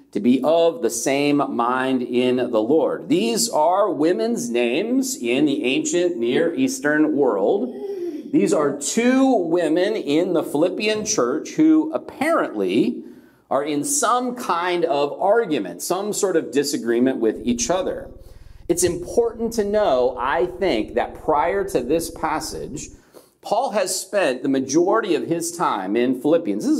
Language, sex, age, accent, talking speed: English, male, 40-59, American, 145 wpm